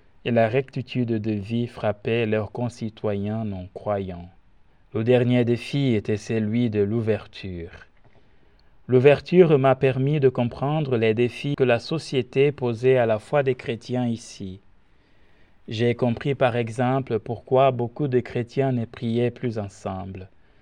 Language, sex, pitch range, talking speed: French, male, 105-125 Hz, 130 wpm